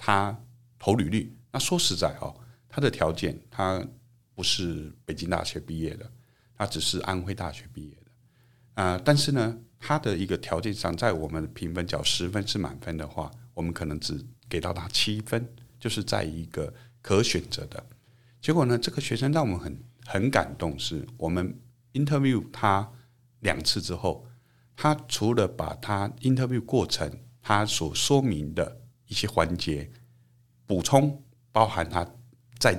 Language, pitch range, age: Chinese, 90-125 Hz, 50-69